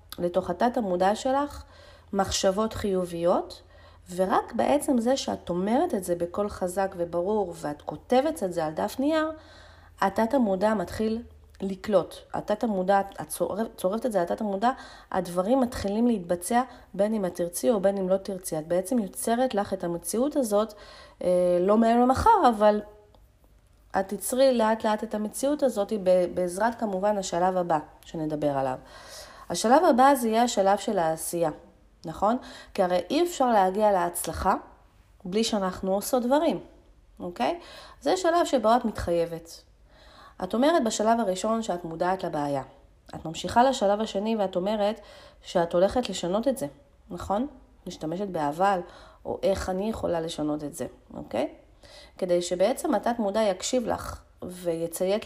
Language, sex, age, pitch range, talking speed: Hebrew, female, 40-59, 180-240 Hz, 145 wpm